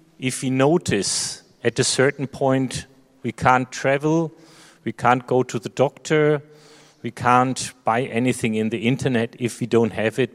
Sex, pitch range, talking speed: male, 115-140 Hz, 160 wpm